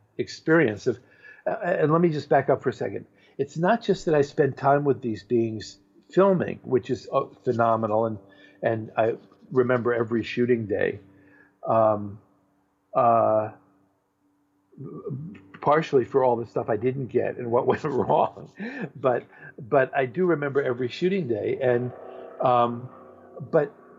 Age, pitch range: 50-69, 120-145 Hz